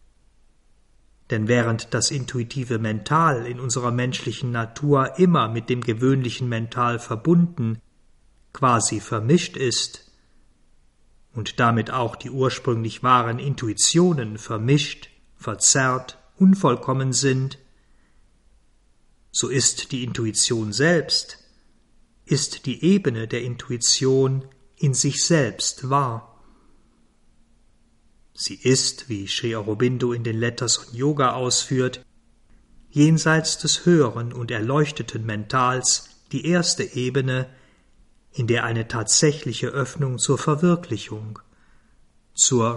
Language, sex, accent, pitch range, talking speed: German, male, German, 115-140 Hz, 100 wpm